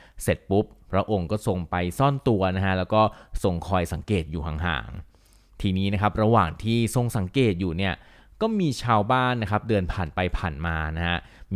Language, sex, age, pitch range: Thai, male, 20-39, 90-115 Hz